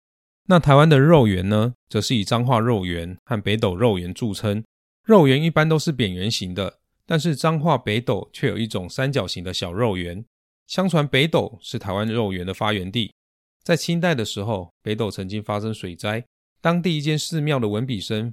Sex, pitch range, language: male, 100-135 Hz, Chinese